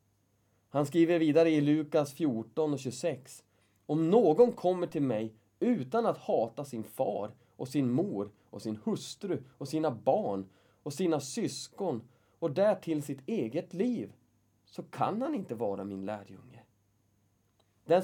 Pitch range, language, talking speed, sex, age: 105-155 Hz, Swedish, 145 wpm, male, 20-39